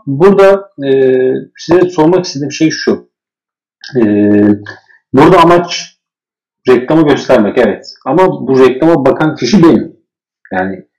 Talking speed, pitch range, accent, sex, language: 110 wpm, 125-185 Hz, native, male, Turkish